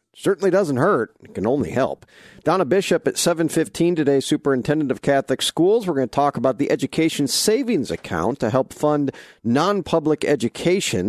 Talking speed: 160 wpm